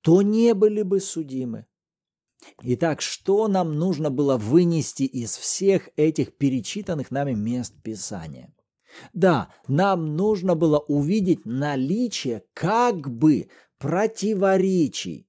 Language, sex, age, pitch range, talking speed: Russian, male, 40-59, 140-205 Hz, 105 wpm